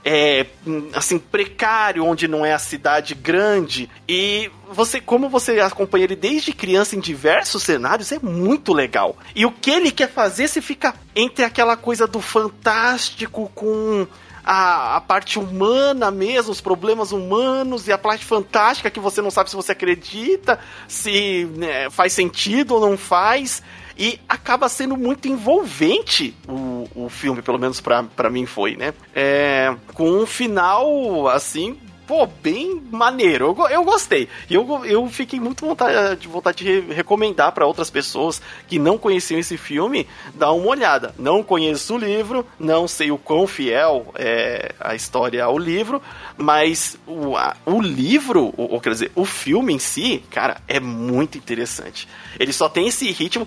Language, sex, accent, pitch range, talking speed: Portuguese, male, Brazilian, 165-245 Hz, 160 wpm